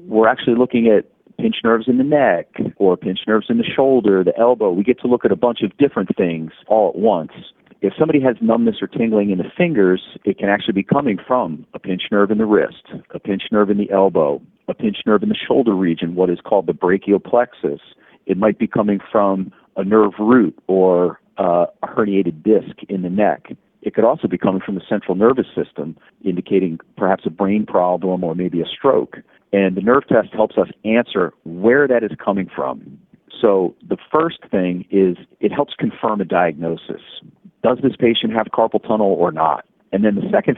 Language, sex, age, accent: English, male, 40-59, American